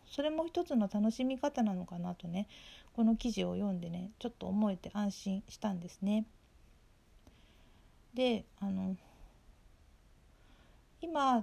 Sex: female